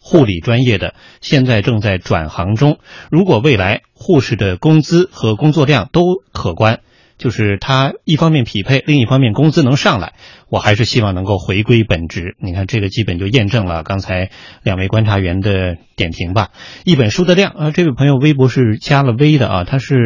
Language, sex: Chinese, male